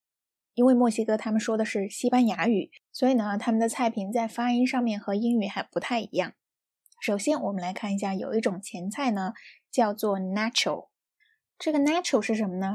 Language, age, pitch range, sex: Chinese, 20-39, 195-250 Hz, female